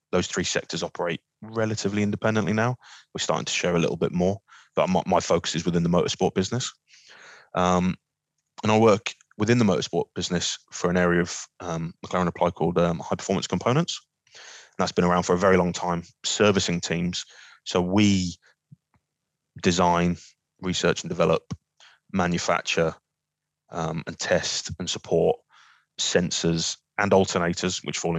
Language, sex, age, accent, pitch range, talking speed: English, male, 20-39, British, 85-95 Hz, 150 wpm